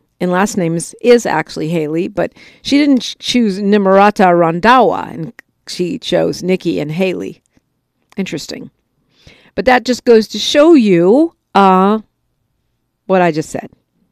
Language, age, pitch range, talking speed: English, 50-69, 155-195 Hz, 135 wpm